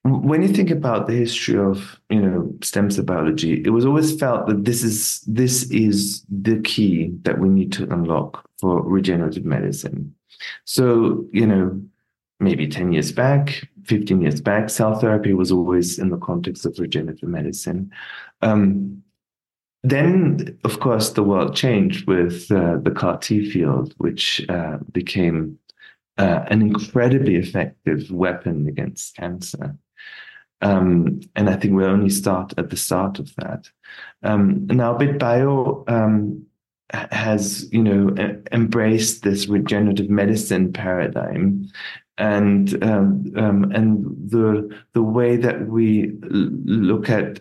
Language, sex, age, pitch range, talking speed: English, male, 30-49, 95-115 Hz, 140 wpm